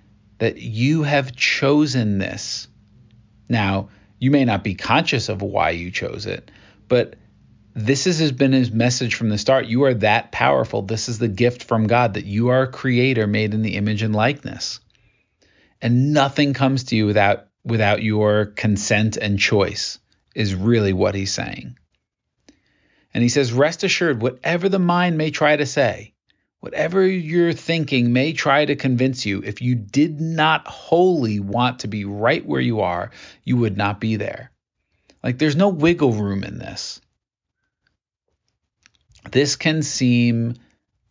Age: 40-59